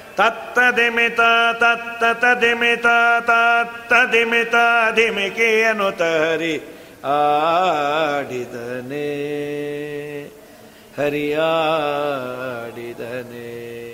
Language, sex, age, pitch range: Kannada, male, 50-69, 150-240 Hz